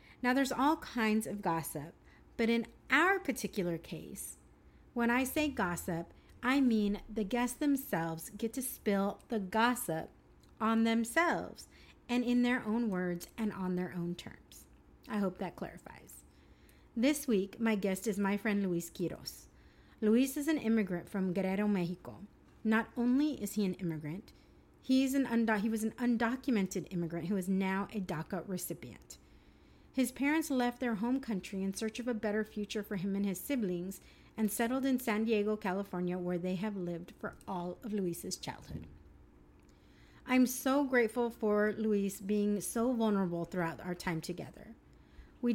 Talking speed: 160 wpm